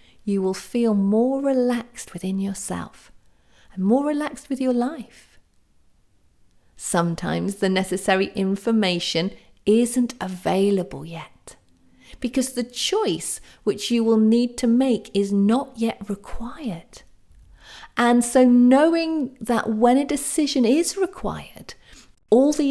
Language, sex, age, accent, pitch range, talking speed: English, female, 40-59, British, 200-260 Hz, 115 wpm